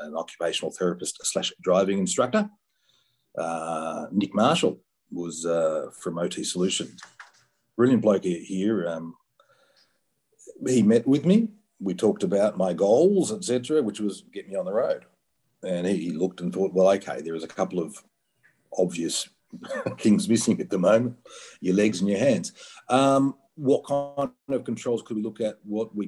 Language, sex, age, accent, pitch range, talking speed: English, male, 40-59, Australian, 95-125 Hz, 160 wpm